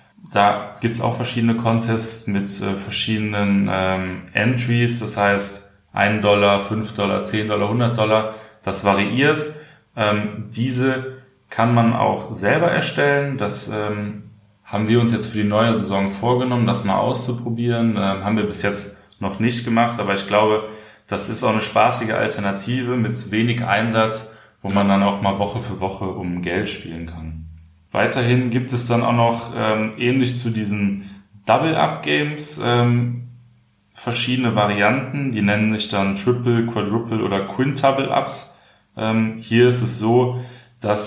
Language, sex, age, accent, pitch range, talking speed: German, male, 20-39, German, 100-115 Hz, 150 wpm